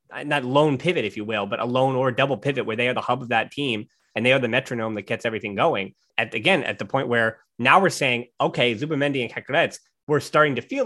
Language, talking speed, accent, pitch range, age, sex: English, 260 wpm, American, 120-145 Hz, 20-39, male